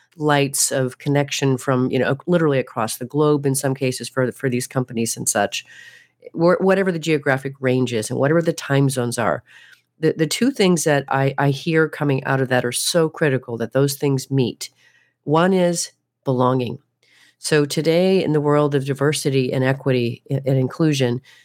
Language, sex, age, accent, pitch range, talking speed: English, female, 40-59, American, 130-150 Hz, 180 wpm